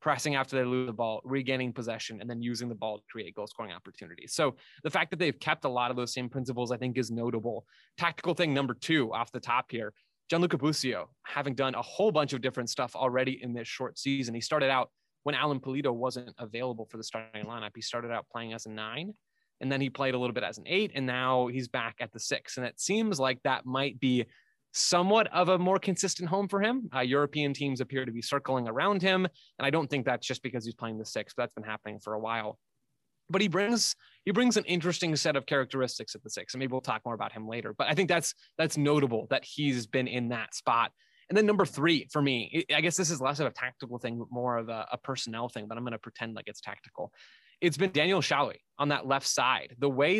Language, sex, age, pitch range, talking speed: English, male, 20-39, 120-155 Hz, 245 wpm